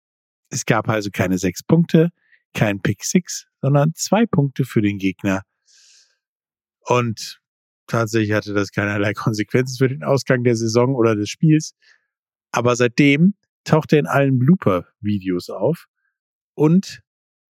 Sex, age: male, 50-69